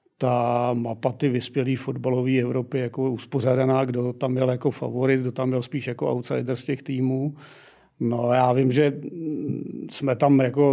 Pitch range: 125-140 Hz